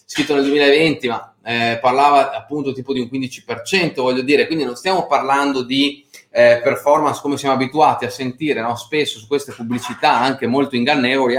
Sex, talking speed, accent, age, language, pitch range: male, 180 wpm, native, 30-49, Italian, 125-155 Hz